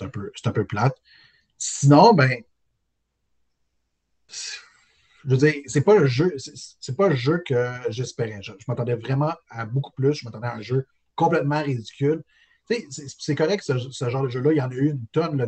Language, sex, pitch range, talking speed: French, male, 115-145 Hz, 195 wpm